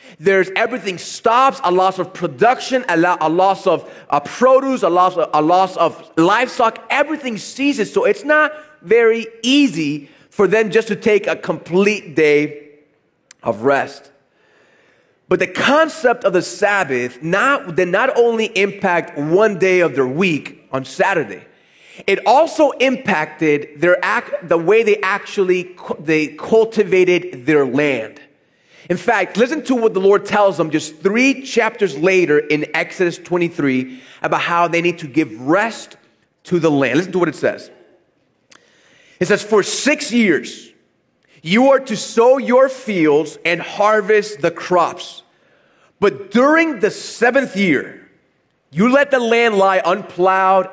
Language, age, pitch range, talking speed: English, 30-49, 160-235 Hz, 150 wpm